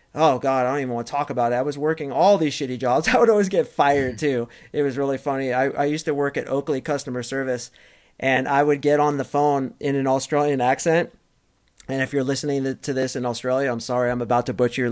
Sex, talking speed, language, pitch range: male, 250 wpm, English, 135-180 Hz